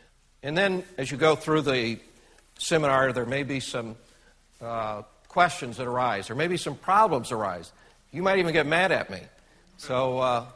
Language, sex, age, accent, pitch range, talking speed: English, male, 60-79, American, 115-140 Hz, 170 wpm